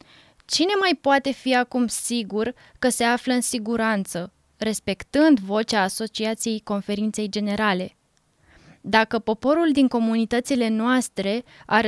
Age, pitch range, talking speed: 20-39, 215-280 Hz, 110 wpm